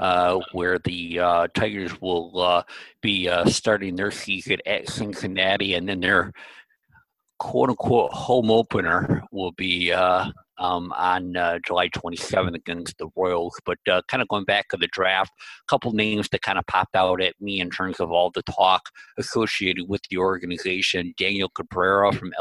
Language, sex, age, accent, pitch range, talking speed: English, male, 50-69, American, 90-105 Hz, 165 wpm